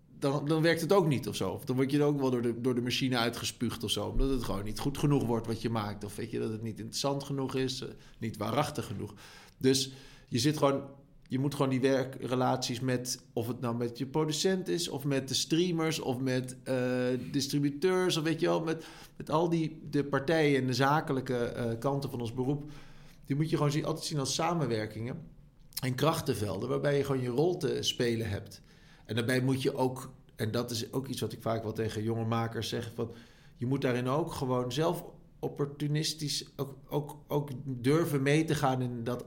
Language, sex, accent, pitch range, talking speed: English, male, Dutch, 120-150 Hz, 215 wpm